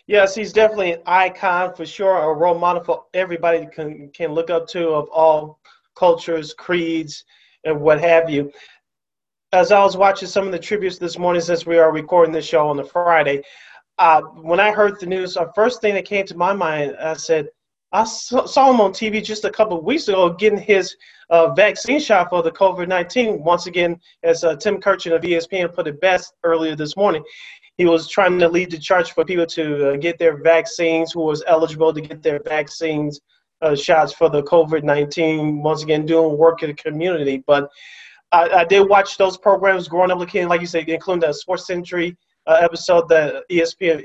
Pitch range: 160-190 Hz